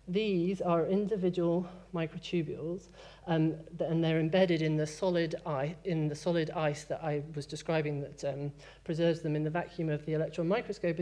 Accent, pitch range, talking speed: British, 150-180 Hz, 155 wpm